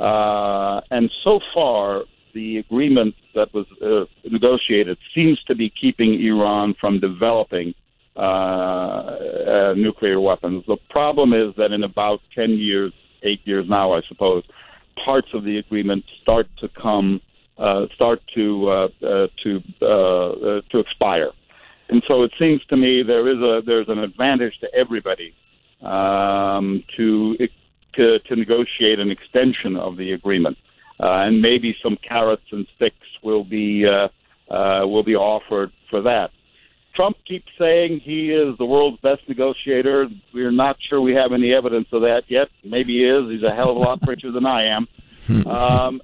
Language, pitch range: English, 100-125 Hz